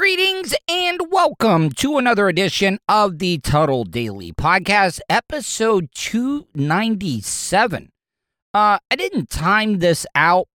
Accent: American